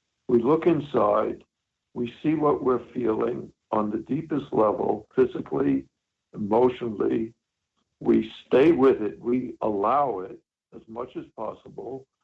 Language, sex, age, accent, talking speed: English, male, 60-79, American, 125 wpm